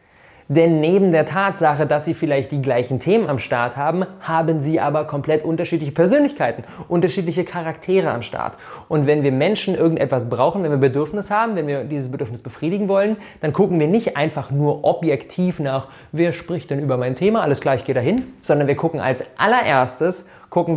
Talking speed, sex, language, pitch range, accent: 180 wpm, male, German, 140-180 Hz, German